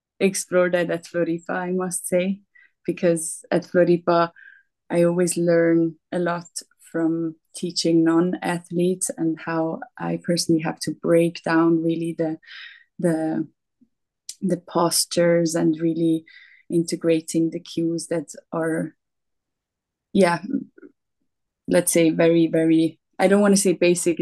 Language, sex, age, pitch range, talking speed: English, female, 20-39, 165-180 Hz, 120 wpm